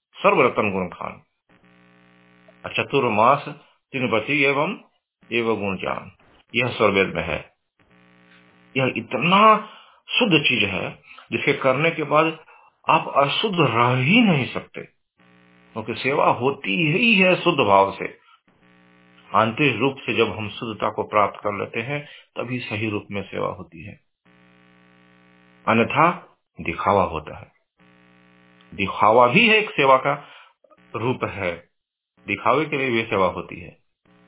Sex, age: male, 50-69